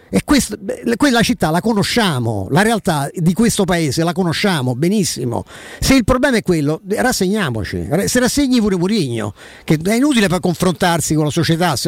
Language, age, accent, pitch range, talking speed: Italian, 50-69, native, 165-225 Hz, 160 wpm